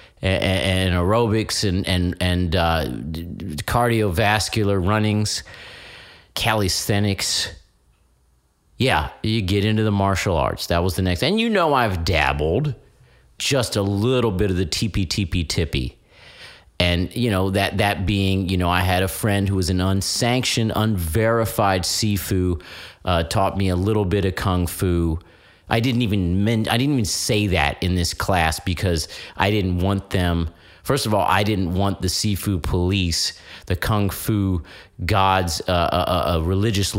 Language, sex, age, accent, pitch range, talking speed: English, male, 40-59, American, 90-110 Hz, 155 wpm